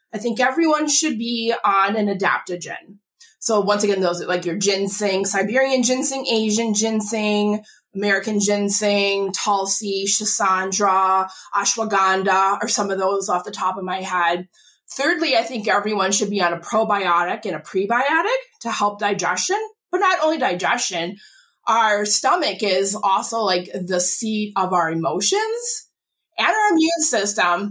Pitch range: 185-235 Hz